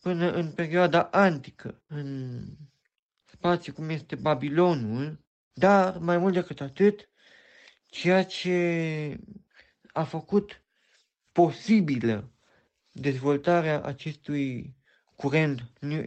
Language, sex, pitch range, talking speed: Romanian, male, 140-180 Hz, 85 wpm